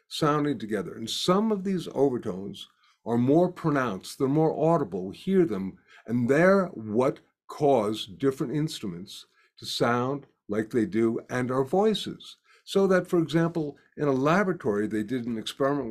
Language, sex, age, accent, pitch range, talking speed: English, male, 50-69, American, 115-170 Hz, 150 wpm